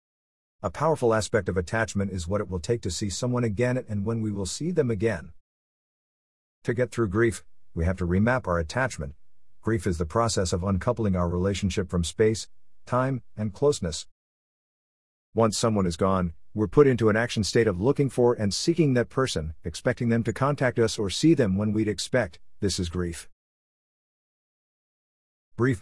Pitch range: 90-120 Hz